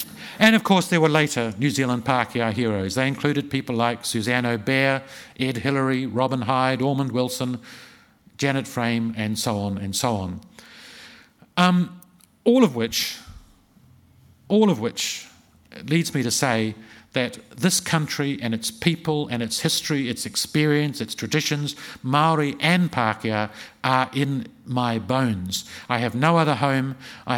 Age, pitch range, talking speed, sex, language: 50-69, 115-155 Hz, 145 wpm, male, English